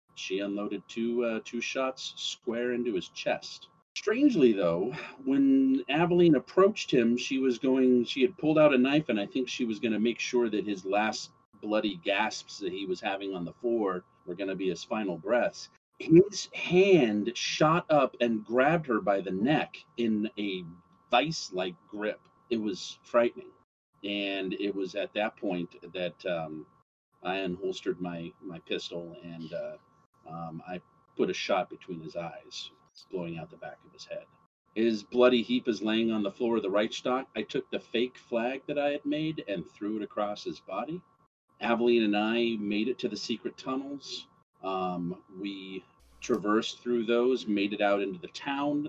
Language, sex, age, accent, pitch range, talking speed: English, male, 40-59, American, 100-140 Hz, 180 wpm